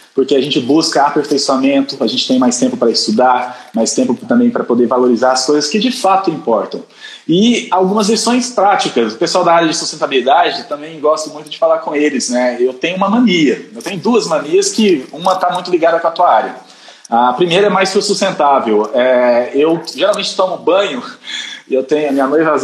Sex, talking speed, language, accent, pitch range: male, 205 wpm, Portuguese, Brazilian, 145-205 Hz